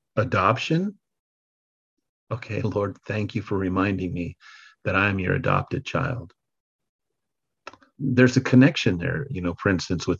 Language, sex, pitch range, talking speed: English, male, 95-130 Hz, 130 wpm